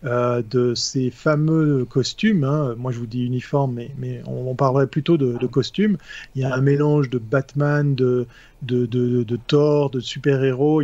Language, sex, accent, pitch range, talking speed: French, male, French, 125-145 Hz, 190 wpm